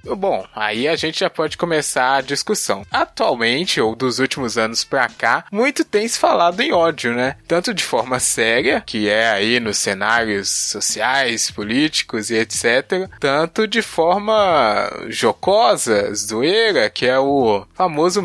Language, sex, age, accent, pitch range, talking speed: Portuguese, male, 20-39, Brazilian, 120-195 Hz, 150 wpm